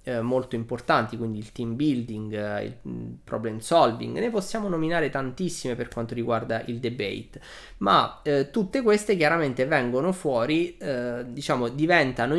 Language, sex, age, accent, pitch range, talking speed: Italian, male, 20-39, native, 115-165 Hz, 135 wpm